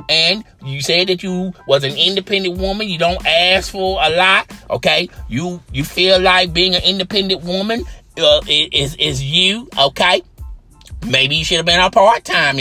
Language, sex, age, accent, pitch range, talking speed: English, male, 30-49, American, 170-220 Hz, 170 wpm